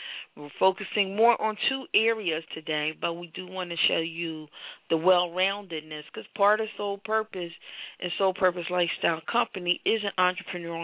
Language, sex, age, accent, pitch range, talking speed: English, female, 40-59, American, 160-190 Hz, 160 wpm